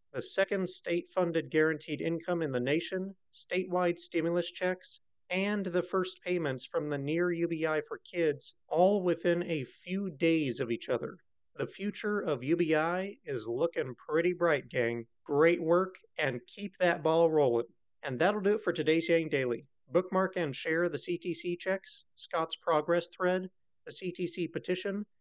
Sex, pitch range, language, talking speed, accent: male, 160-185 Hz, English, 155 wpm, American